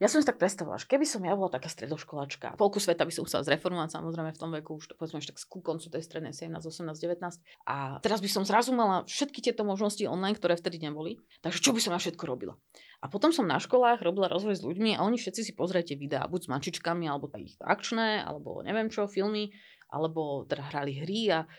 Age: 30-49